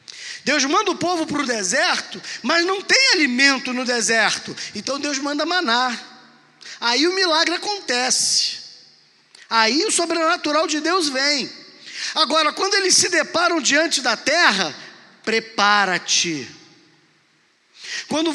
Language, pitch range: Portuguese, 230-325 Hz